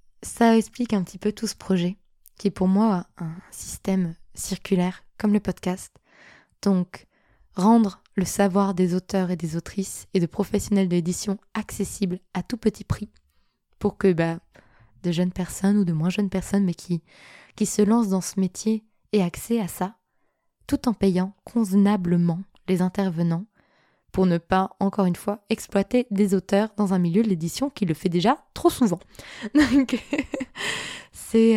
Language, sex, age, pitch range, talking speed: French, female, 20-39, 185-215 Hz, 165 wpm